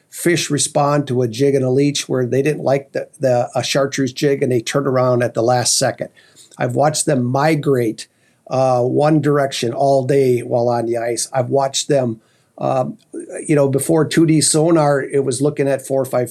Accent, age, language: American, 50-69, English